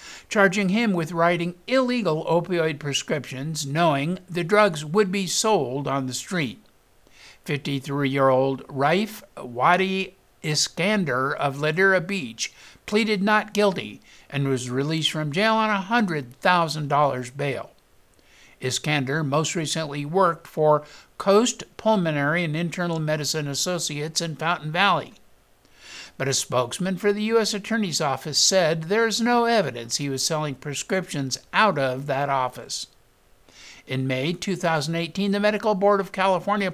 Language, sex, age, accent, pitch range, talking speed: English, male, 60-79, American, 140-195 Hz, 125 wpm